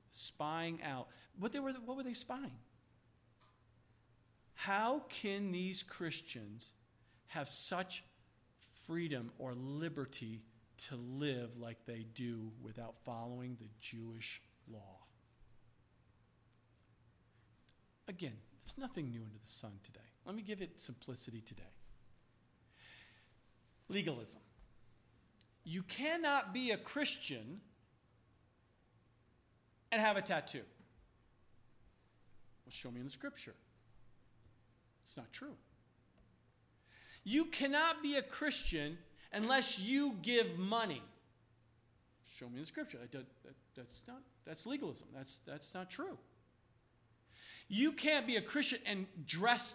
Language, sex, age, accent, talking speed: English, male, 50-69, American, 110 wpm